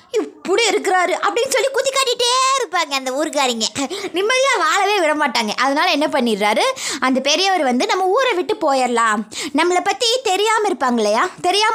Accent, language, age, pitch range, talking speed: native, Tamil, 20-39, 270-375 Hz, 135 wpm